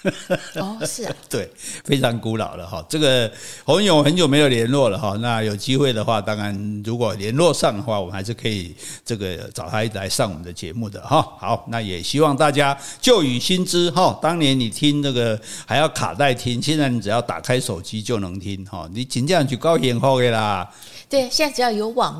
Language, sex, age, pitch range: Chinese, male, 50-69, 110-155 Hz